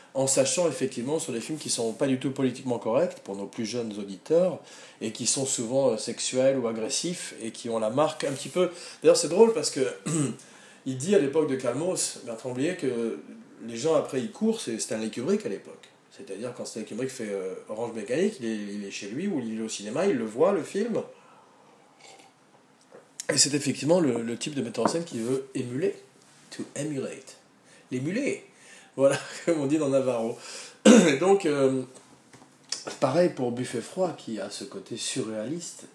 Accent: French